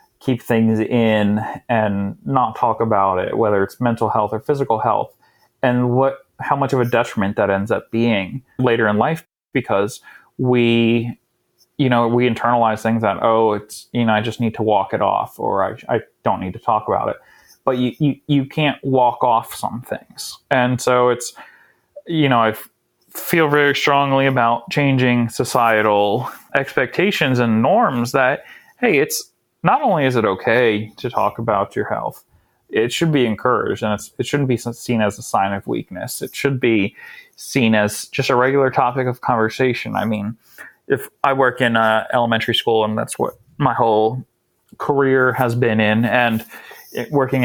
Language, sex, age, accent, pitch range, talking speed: English, male, 30-49, American, 110-130 Hz, 175 wpm